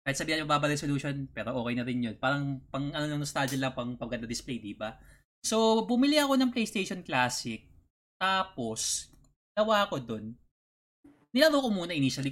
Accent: native